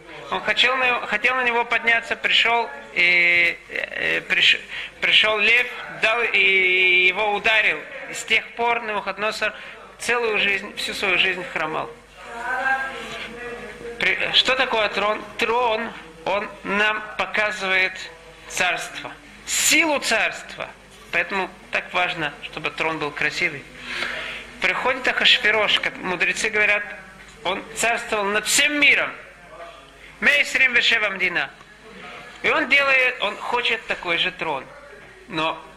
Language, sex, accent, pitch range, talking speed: Russian, male, native, 190-235 Hz, 115 wpm